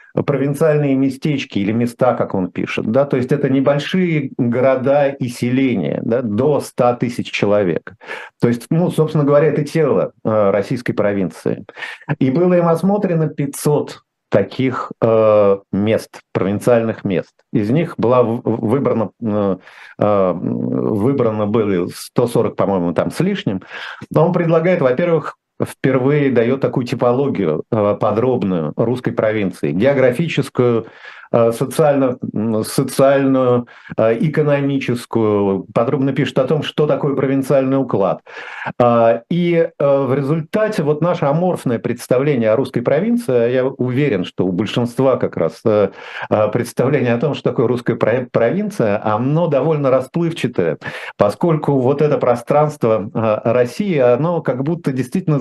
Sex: male